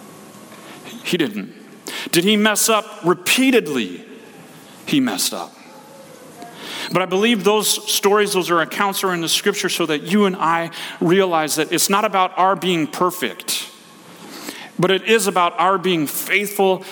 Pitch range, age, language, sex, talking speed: 145-200 Hz, 40-59, English, male, 150 wpm